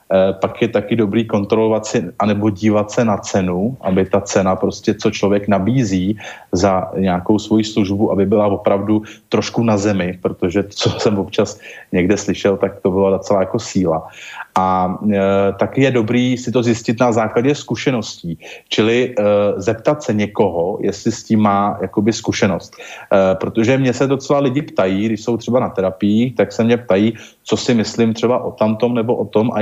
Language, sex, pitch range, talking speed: Slovak, male, 100-120 Hz, 180 wpm